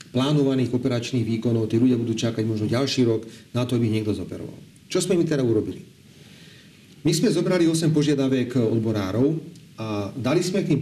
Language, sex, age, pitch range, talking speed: Slovak, male, 40-59, 115-140 Hz, 170 wpm